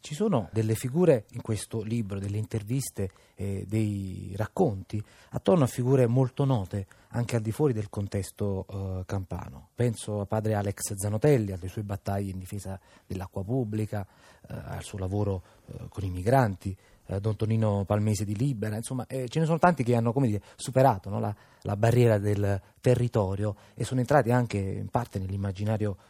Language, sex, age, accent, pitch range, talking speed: Italian, male, 30-49, native, 100-130 Hz, 175 wpm